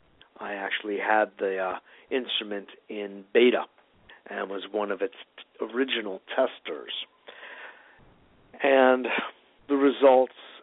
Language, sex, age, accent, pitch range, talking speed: English, male, 50-69, American, 105-140 Hz, 100 wpm